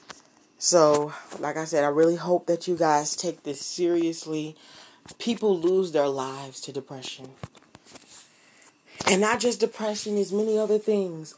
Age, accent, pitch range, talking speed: 20-39, American, 150-180 Hz, 140 wpm